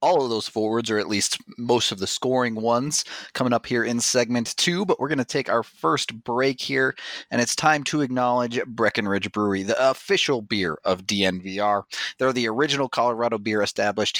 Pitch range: 110-140 Hz